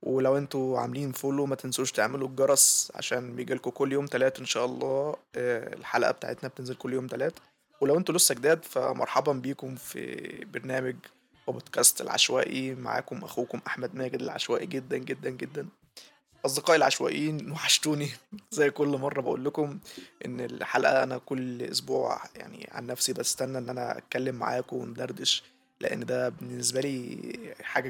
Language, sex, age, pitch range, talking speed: Arabic, male, 20-39, 130-145 Hz, 145 wpm